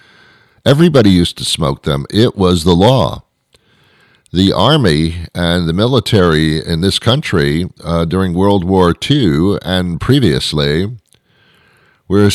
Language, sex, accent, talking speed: English, male, American, 120 wpm